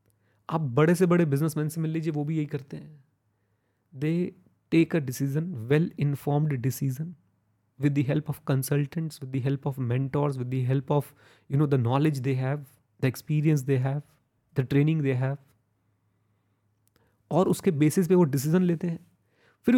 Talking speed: 175 wpm